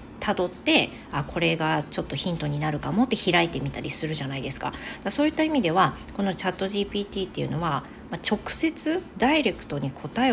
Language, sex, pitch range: Japanese, female, 165-245 Hz